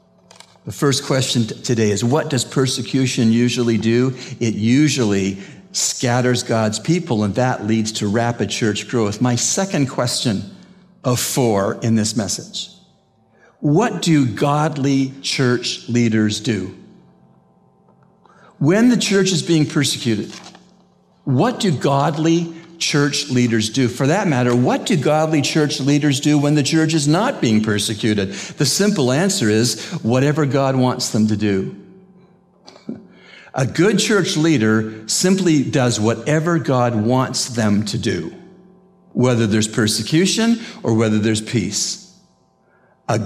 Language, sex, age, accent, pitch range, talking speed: English, male, 50-69, American, 115-165 Hz, 130 wpm